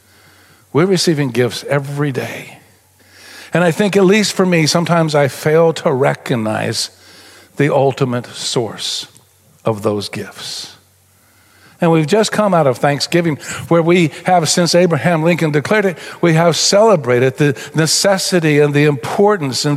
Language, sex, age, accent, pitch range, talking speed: English, male, 50-69, American, 110-155 Hz, 145 wpm